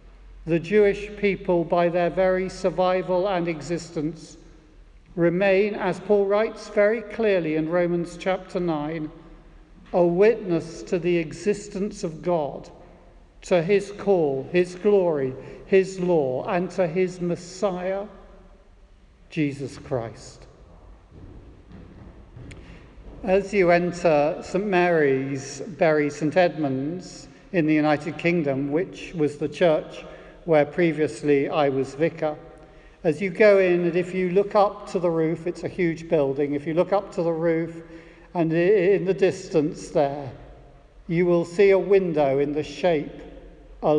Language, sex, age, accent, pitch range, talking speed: English, male, 50-69, British, 145-185 Hz, 130 wpm